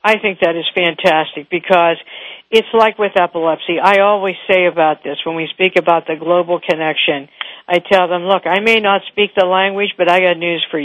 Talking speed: 205 wpm